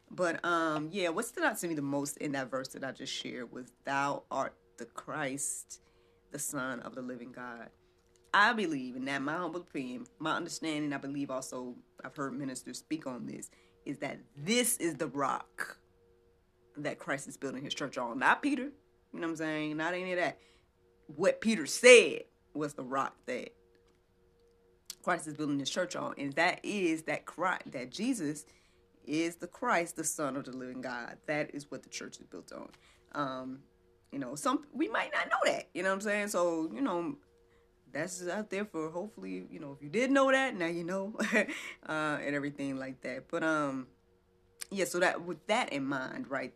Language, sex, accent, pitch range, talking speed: English, female, American, 120-180 Hz, 200 wpm